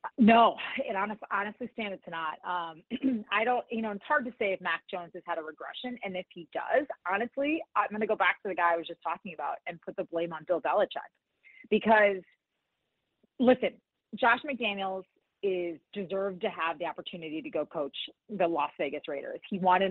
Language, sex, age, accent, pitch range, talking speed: English, female, 30-49, American, 180-245 Hz, 200 wpm